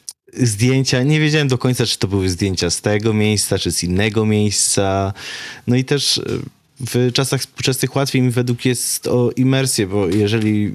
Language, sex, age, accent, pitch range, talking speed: Polish, male, 20-39, native, 100-120 Hz, 165 wpm